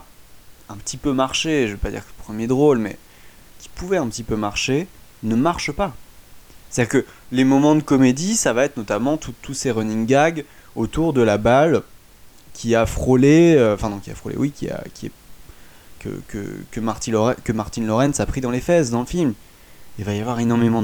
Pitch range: 105-140 Hz